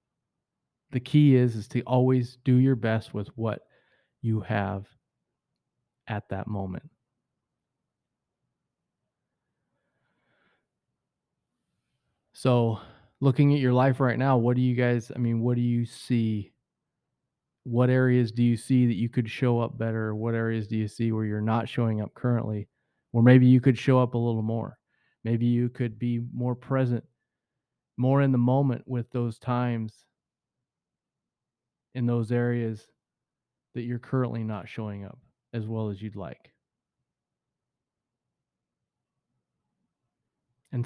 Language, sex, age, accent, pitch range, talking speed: English, male, 30-49, American, 115-130 Hz, 135 wpm